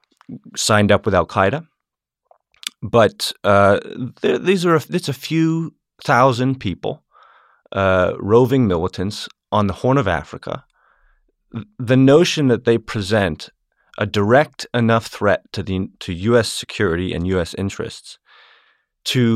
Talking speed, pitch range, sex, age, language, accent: 125 wpm, 95-120 Hz, male, 30-49, English, American